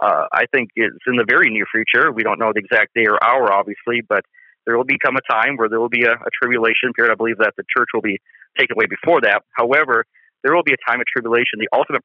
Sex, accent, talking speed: male, American, 265 wpm